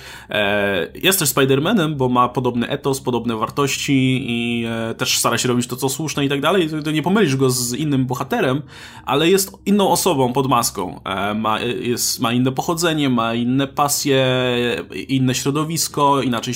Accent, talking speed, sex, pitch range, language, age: native, 160 wpm, male, 115-145 Hz, Polish, 20-39